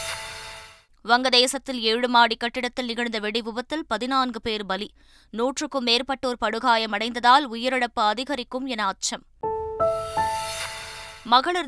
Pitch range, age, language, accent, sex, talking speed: 205-250 Hz, 20-39, Tamil, native, female, 80 wpm